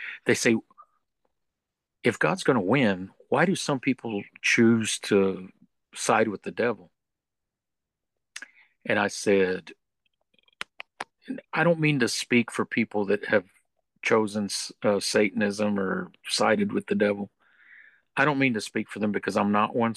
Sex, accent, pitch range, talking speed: male, American, 100-115 Hz, 145 wpm